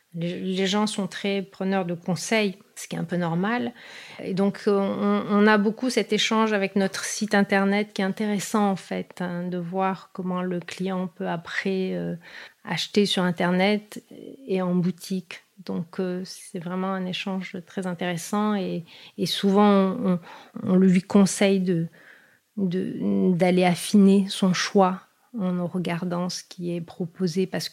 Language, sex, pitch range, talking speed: French, female, 175-195 Hz, 160 wpm